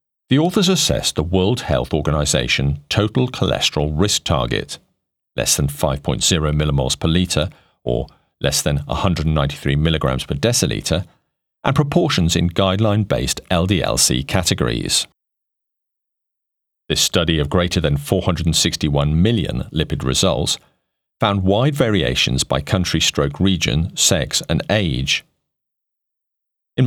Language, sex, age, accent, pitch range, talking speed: English, male, 40-59, British, 75-105 Hz, 110 wpm